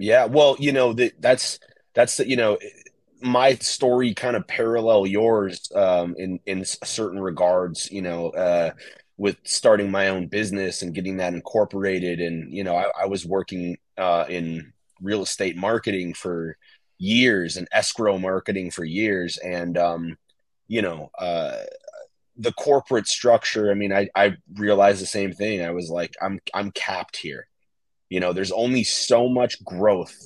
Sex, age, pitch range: male, 30-49, 90-110 Hz